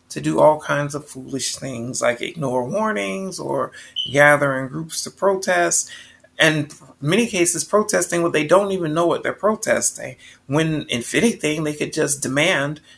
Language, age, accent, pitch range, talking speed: English, 30-49, American, 145-190 Hz, 165 wpm